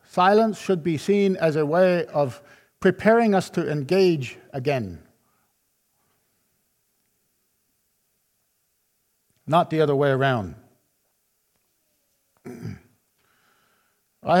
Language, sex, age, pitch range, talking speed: English, male, 50-69, 140-185 Hz, 80 wpm